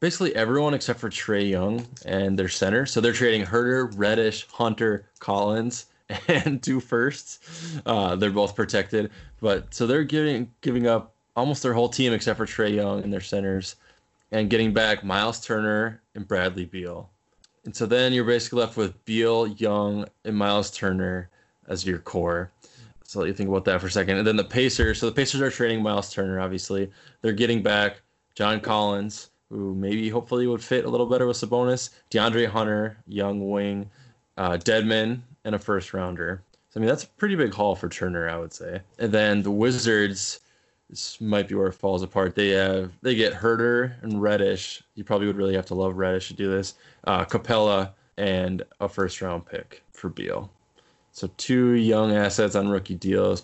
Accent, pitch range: American, 95-115 Hz